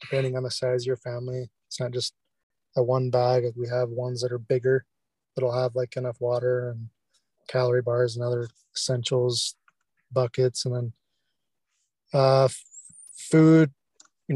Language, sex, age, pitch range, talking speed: English, male, 20-39, 125-135 Hz, 155 wpm